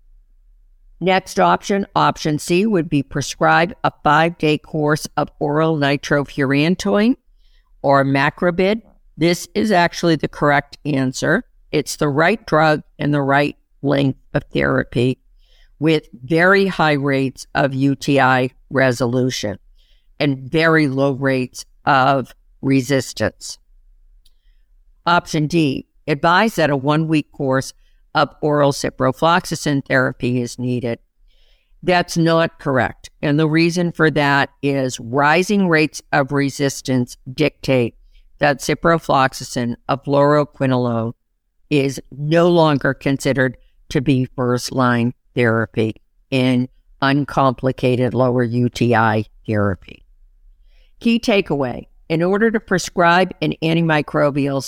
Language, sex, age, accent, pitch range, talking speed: English, female, 50-69, American, 130-160 Hz, 105 wpm